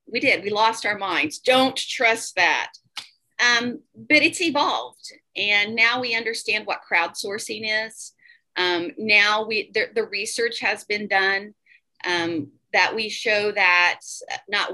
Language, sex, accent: English, female, American